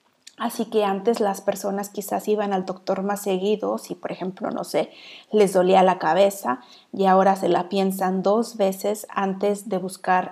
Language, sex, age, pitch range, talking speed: Spanish, female, 30-49, 185-205 Hz, 175 wpm